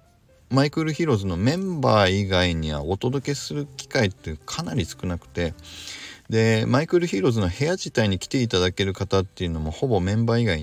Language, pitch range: Japanese, 90-125 Hz